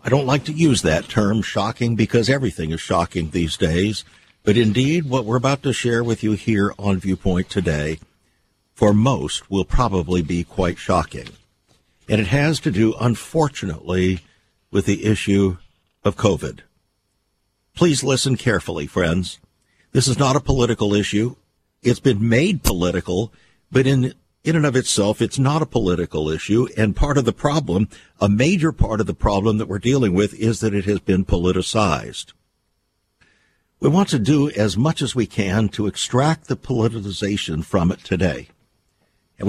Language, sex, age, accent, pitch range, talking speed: English, male, 50-69, American, 95-125 Hz, 165 wpm